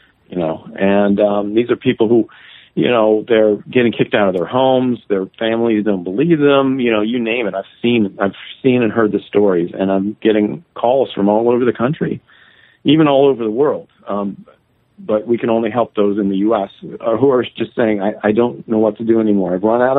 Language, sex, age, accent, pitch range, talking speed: English, male, 50-69, American, 100-125 Hz, 220 wpm